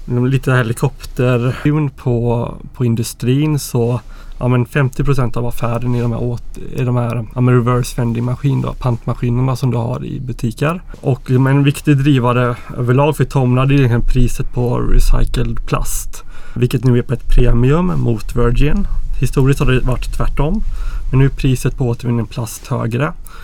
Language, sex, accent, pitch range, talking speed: Swedish, male, native, 120-140 Hz, 160 wpm